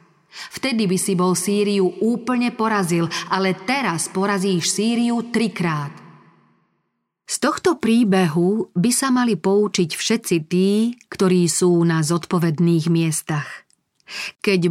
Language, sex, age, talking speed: Slovak, female, 40-59, 110 wpm